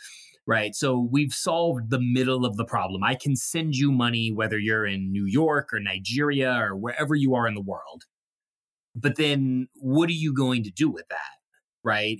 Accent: American